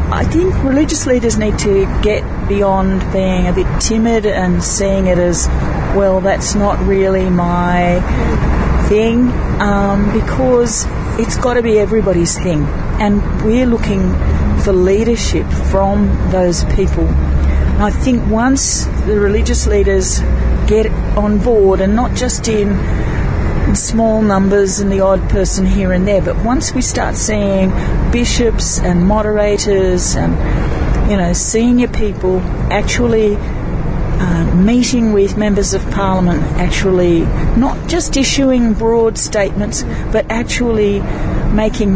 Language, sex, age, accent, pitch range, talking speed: English, female, 40-59, Australian, 185-220 Hz, 130 wpm